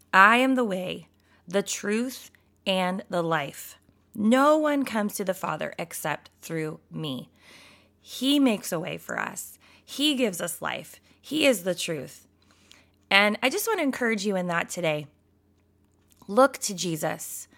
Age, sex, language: 20-39, female, English